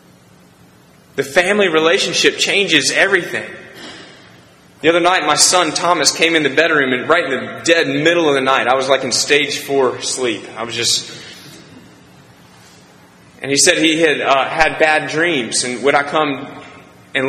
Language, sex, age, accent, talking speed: English, male, 20-39, American, 165 wpm